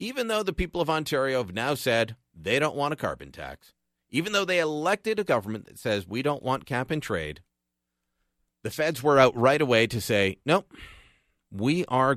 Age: 40-59